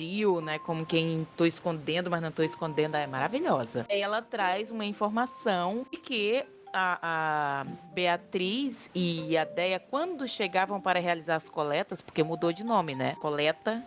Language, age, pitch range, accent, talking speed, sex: Portuguese, 30-49, 175-230 Hz, Brazilian, 150 wpm, female